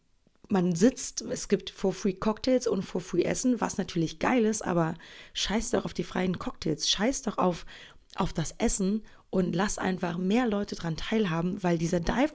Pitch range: 175-215 Hz